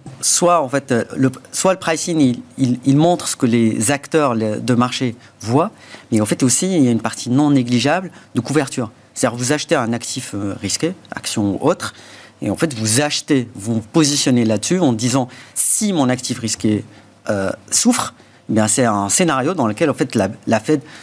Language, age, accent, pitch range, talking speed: French, 40-59, French, 115-145 Hz, 200 wpm